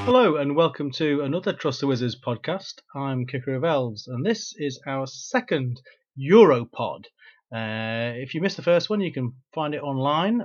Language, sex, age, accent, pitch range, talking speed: English, male, 40-59, British, 125-165 Hz, 180 wpm